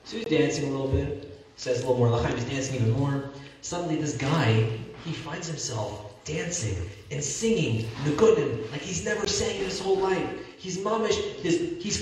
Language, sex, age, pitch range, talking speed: English, male, 30-49, 115-185 Hz, 180 wpm